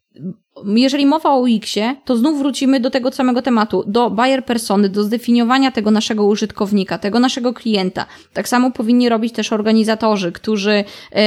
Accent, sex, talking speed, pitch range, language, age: native, female, 155 wpm, 210-250 Hz, Polish, 20-39